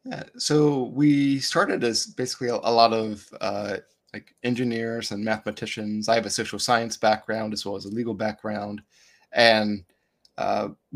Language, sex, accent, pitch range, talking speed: English, male, American, 105-125 Hz, 160 wpm